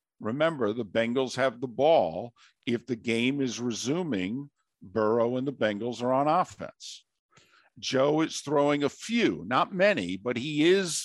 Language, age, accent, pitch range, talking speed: English, 50-69, American, 120-150 Hz, 150 wpm